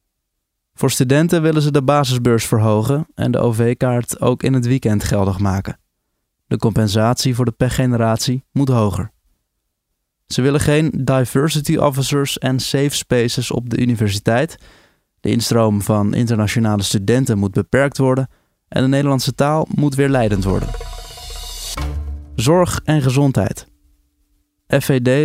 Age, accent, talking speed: 20-39, Dutch, 130 wpm